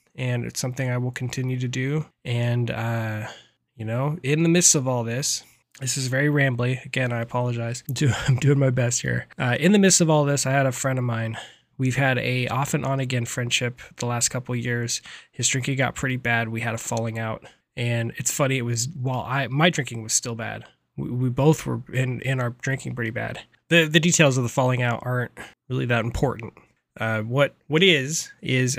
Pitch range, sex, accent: 120-140 Hz, male, American